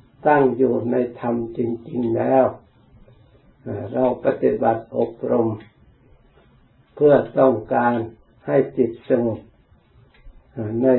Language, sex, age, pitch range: Thai, male, 60-79, 115-135 Hz